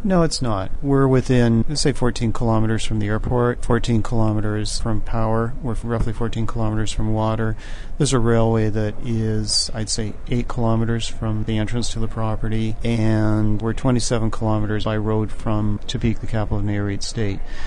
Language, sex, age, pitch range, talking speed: English, male, 40-59, 105-120 Hz, 170 wpm